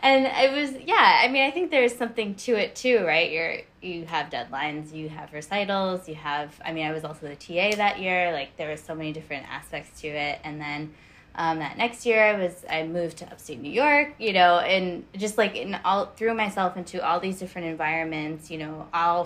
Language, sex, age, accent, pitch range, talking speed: English, female, 20-39, American, 160-185 Hz, 225 wpm